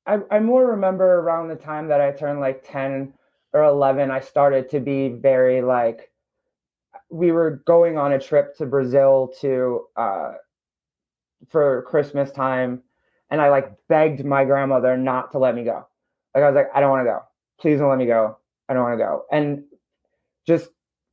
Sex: male